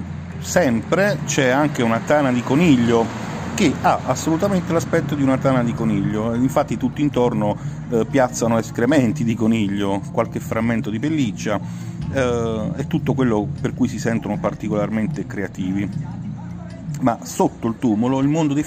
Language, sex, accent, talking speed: Italian, male, native, 145 wpm